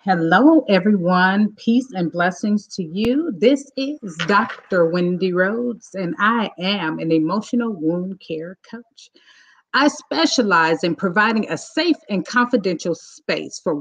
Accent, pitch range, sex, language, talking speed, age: American, 185-270 Hz, female, English, 130 wpm, 40-59